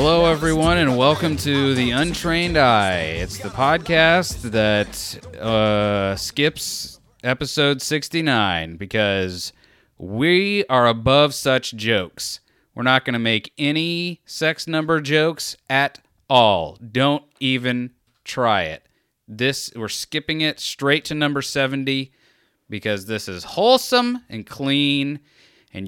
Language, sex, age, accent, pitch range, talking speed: English, male, 30-49, American, 105-145 Hz, 120 wpm